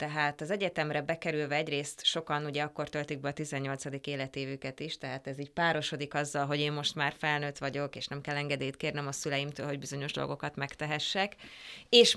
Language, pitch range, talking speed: English, 145-175 Hz, 185 wpm